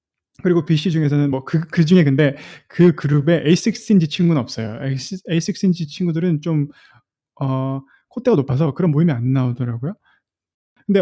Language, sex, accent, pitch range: Korean, male, native, 145-190 Hz